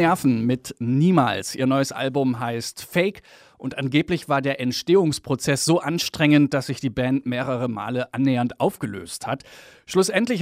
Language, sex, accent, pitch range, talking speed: German, male, German, 125-150 Hz, 140 wpm